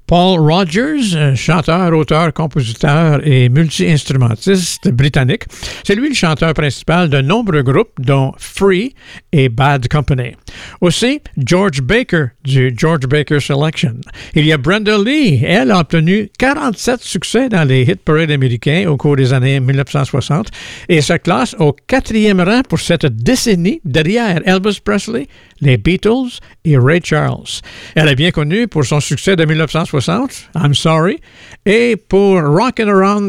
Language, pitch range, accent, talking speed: French, 145-195 Hz, American, 145 wpm